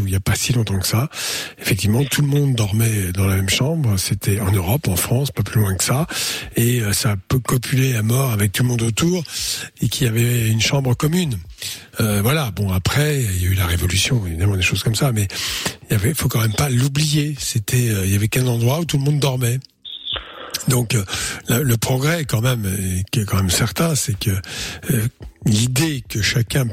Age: 60-79